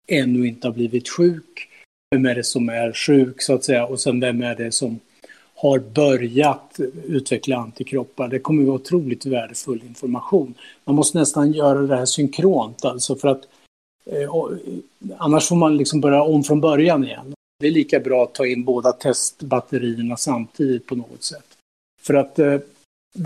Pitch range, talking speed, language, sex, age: 125-155 Hz, 175 wpm, Swedish, male, 60-79